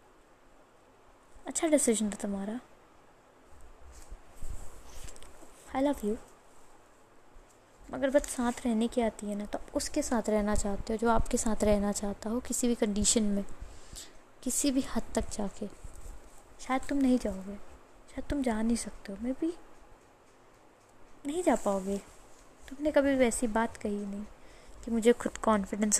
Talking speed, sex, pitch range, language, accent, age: 145 wpm, female, 210-270 Hz, Hindi, native, 20-39